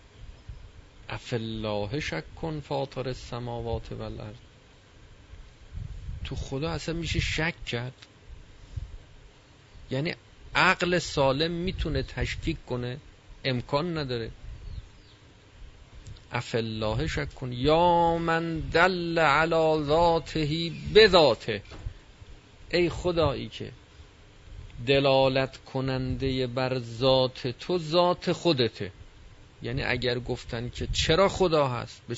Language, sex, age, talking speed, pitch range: Persian, male, 40-59, 85 wpm, 100-130 Hz